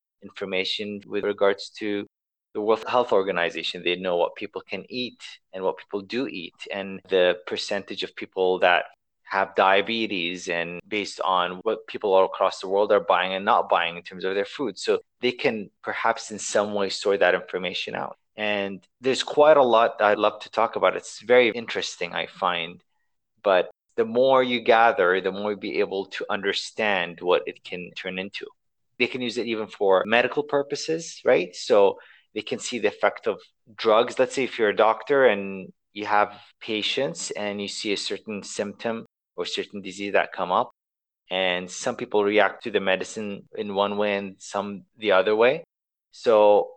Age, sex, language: 30-49, male, English